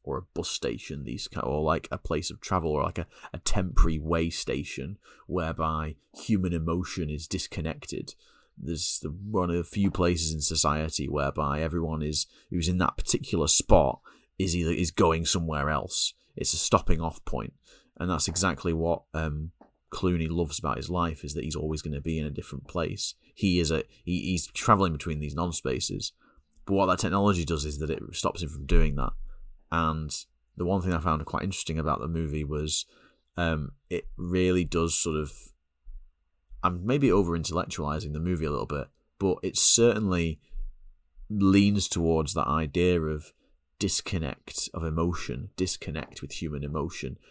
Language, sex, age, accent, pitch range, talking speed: English, male, 30-49, British, 75-90 Hz, 175 wpm